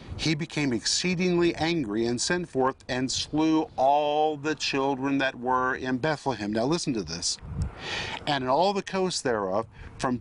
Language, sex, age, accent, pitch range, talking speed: English, male, 50-69, American, 105-150 Hz, 160 wpm